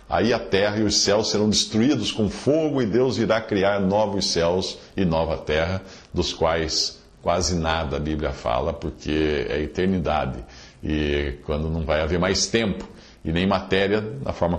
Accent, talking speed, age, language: Brazilian, 175 wpm, 50-69, English